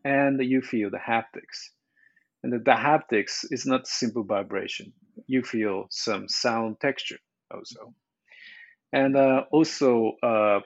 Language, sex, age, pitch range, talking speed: English, male, 40-59, 110-135 Hz, 130 wpm